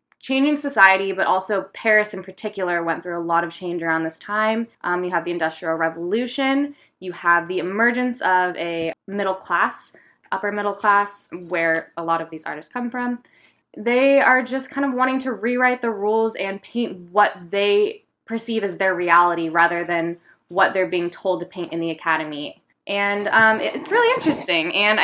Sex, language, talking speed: female, English, 180 wpm